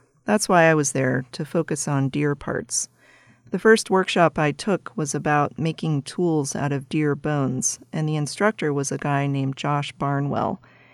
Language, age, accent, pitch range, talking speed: English, 40-59, American, 140-170 Hz, 175 wpm